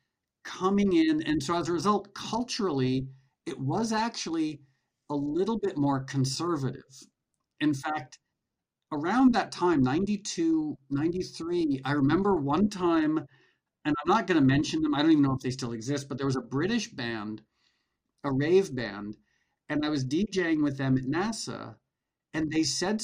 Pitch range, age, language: 135-185 Hz, 50-69, English